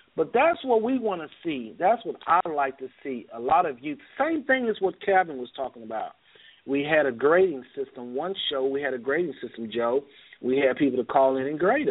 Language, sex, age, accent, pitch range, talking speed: English, male, 40-59, American, 130-185 Hz, 230 wpm